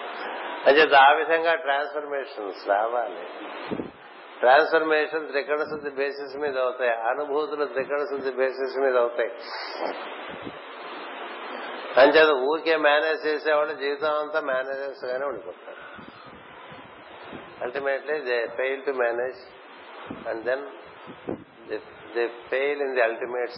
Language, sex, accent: Telugu, male, native